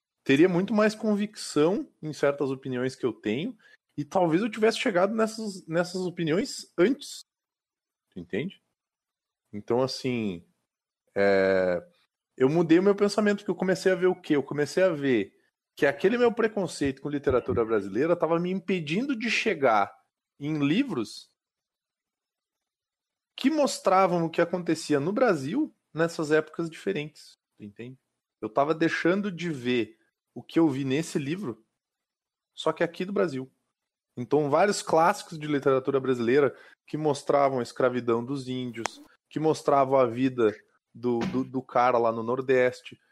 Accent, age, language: Brazilian, 20-39, Portuguese